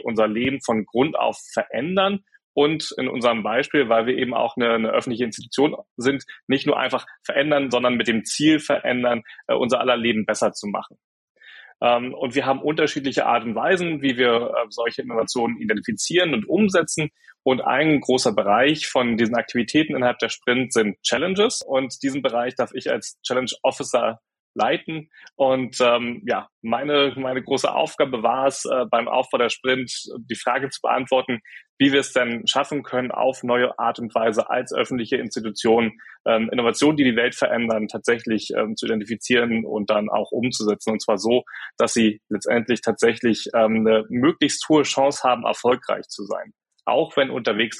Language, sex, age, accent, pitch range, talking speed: German, male, 30-49, German, 115-140 Hz, 170 wpm